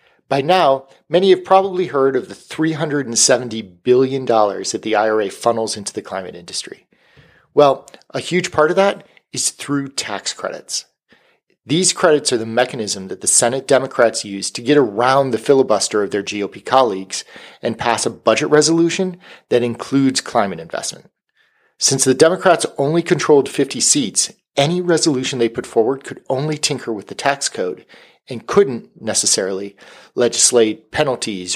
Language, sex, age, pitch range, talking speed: English, male, 40-59, 115-165 Hz, 150 wpm